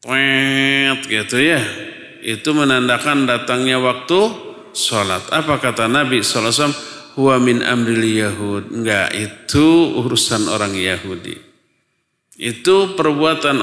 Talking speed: 95 wpm